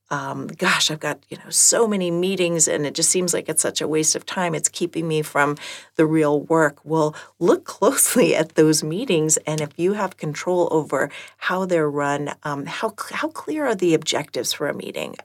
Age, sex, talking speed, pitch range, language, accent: 40-59, female, 210 wpm, 145-175 Hz, English, American